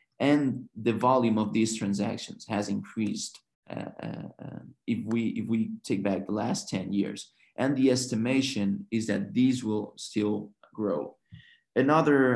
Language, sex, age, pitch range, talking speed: English, male, 30-49, 105-125 Hz, 145 wpm